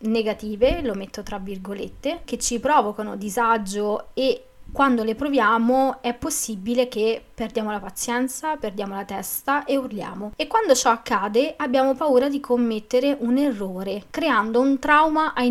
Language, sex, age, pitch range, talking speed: Italian, female, 20-39, 210-265 Hz, 145 wpm